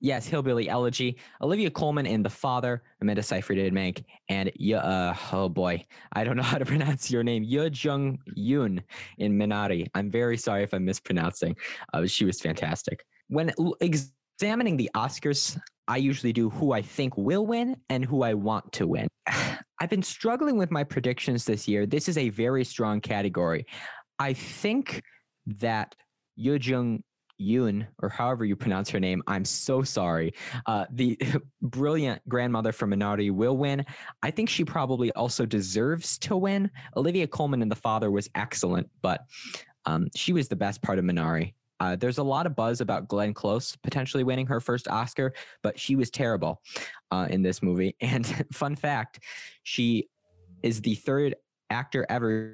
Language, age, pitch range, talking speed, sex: English, 20-39, 105-145 Hz, 170 wpm, male